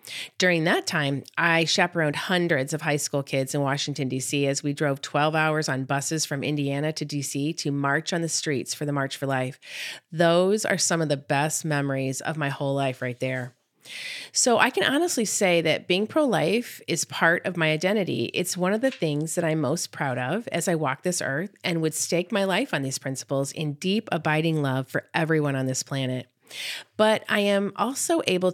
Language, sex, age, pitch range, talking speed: English, female, 30-49, 140-170 Hz, 205 wpm